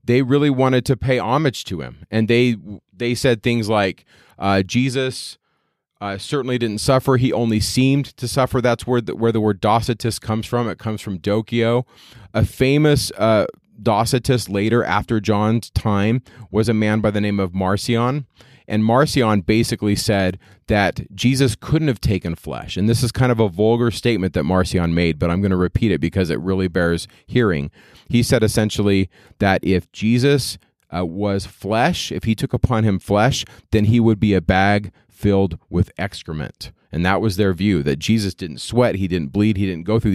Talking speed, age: 190 wpm, 30-49